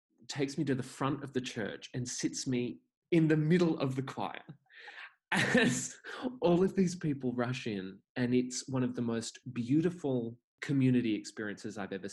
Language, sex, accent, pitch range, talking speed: English, male, Australian, 100-135 Hz, 175 wpm